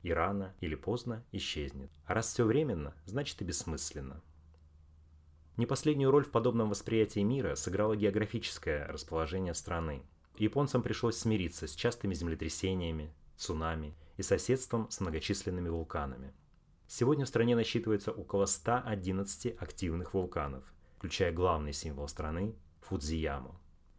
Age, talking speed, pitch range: 30-49, 125 wpm, 80-110 Hz